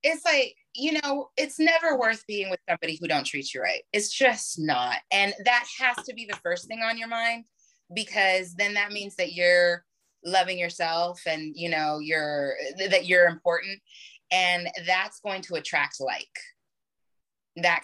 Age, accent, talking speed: 20-39, American, 175 wpm